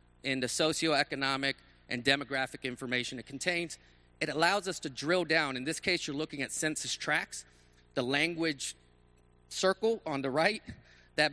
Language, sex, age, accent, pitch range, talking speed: English, male, 40-59, American, 125-160 Hz, 155 wpm